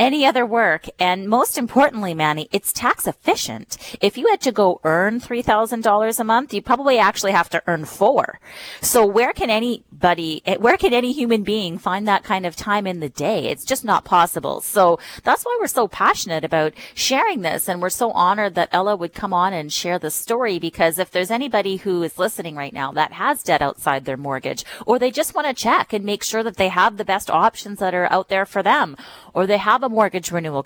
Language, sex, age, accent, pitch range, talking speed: English, female, 30-49, American, 160-225 Hz, 215 wpm